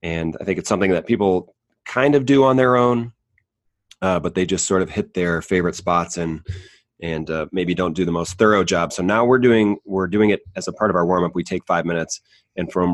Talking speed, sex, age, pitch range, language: 245 wpm, male, 30-49, 90-105 Hz, English